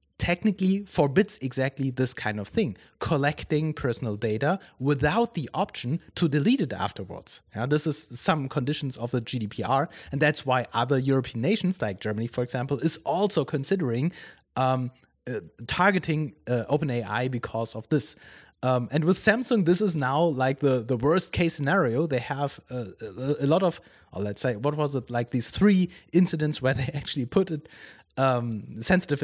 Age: 30-49